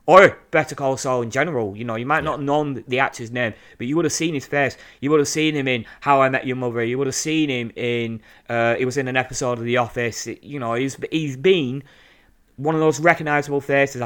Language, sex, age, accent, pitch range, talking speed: English, male, 30-49, British, 120-145 Hz, 255 wpm